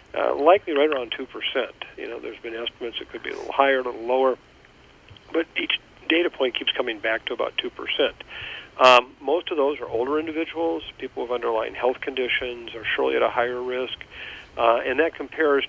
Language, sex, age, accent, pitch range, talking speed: English, male, 50-69, American, 115-155 Hz, 195 wpm